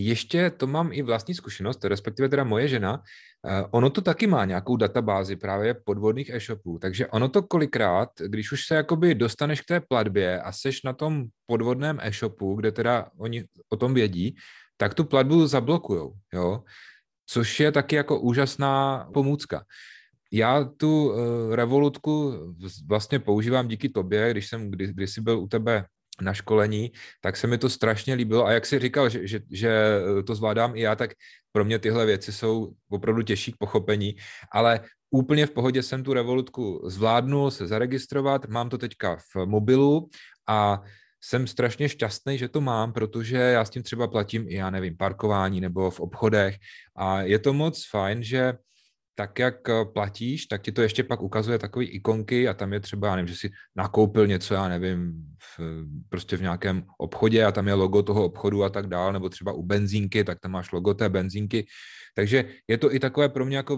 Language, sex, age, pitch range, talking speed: Czech, male, 30-49, 100-130 Hz, 185 wpm